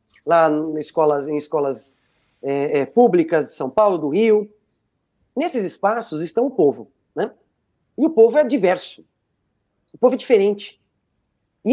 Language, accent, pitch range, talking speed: Portuguese, Brazilian, 160-245 Hz, 150 wpm